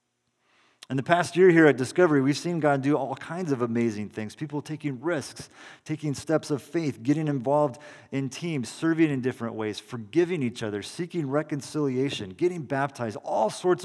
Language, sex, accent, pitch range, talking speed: English, male, American, 125-160 Hz, 175 wpm